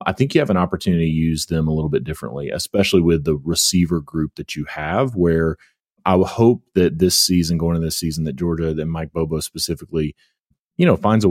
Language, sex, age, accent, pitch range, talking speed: English, male, 30-49, American, 80-95 Hz, 225 wpm